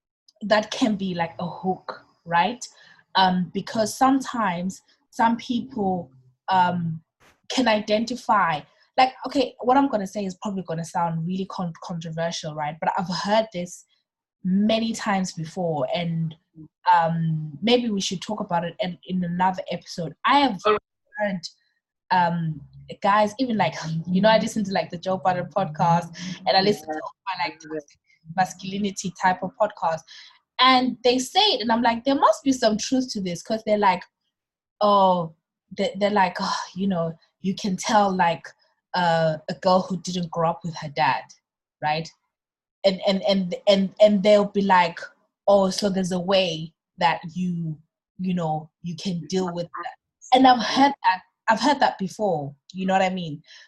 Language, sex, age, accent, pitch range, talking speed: English, female, 20-39, South African, 170-220 Hz, 165 wpm